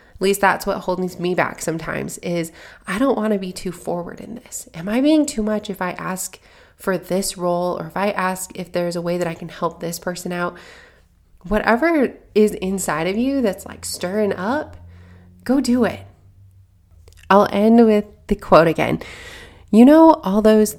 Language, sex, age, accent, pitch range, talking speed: English, female, 20-39, American, 175-215 Hz, 190 wpm